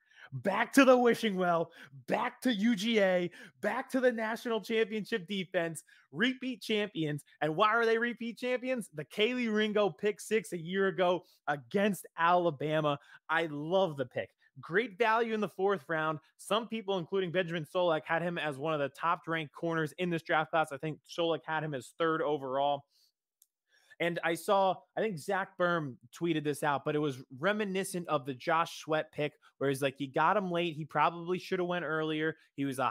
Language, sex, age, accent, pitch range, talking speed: English, male, 20-39, American, 145-195 Hz, 190 wpm